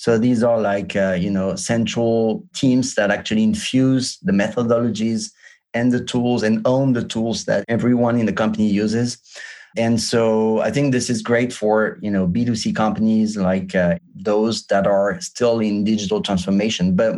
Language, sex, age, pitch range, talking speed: English, male, 30-49, 105-125 Hz, 170 wpm